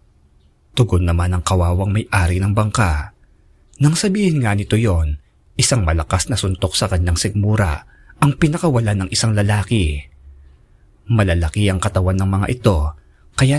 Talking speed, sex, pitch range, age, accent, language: 135 wpm, male, 85-115 Hz, 20-39, native, Filipino